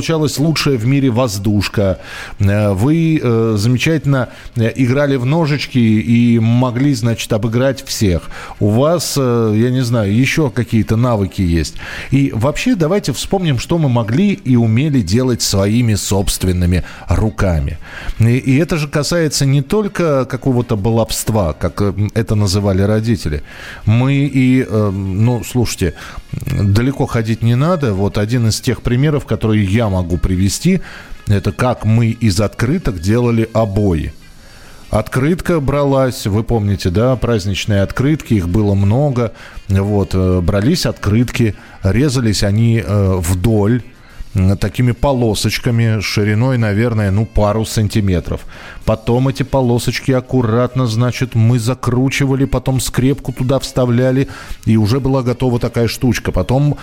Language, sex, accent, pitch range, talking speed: Russian, male, native, 105-135 Hz, 125 wpm